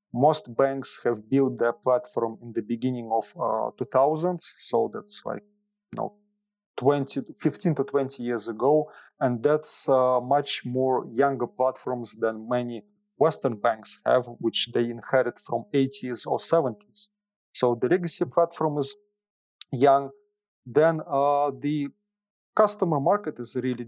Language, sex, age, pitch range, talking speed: English, male, 30-49, 120-155 Hz, 130 wpm